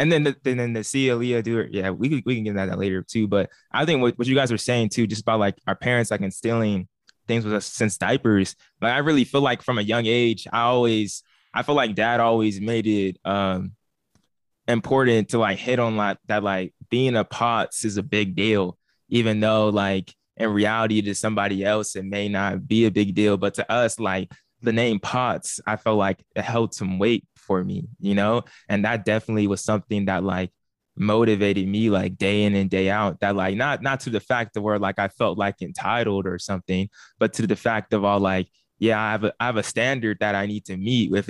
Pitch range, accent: 100-115 Hz, American